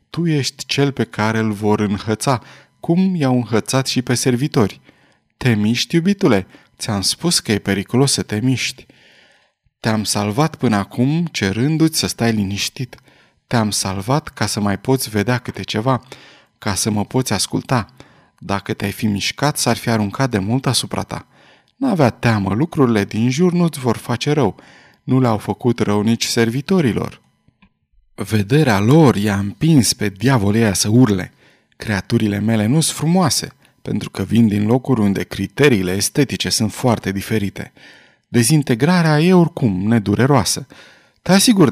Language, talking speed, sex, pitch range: Romanian, 150 wpm, male, 105-135 Hz